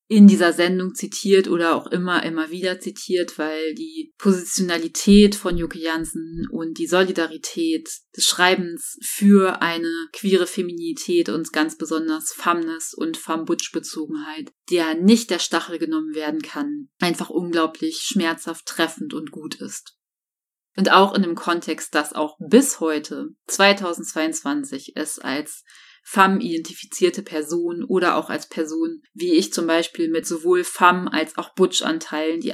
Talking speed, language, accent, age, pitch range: 135 wpm, German, German, 30-49, 160-230 Hz